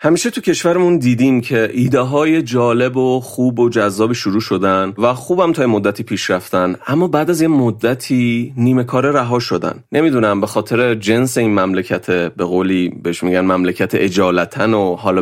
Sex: male